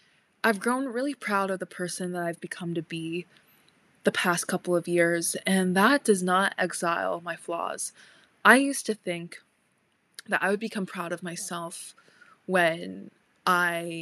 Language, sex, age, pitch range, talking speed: English, female, 20-39, 170-195 Hz, 160 wpm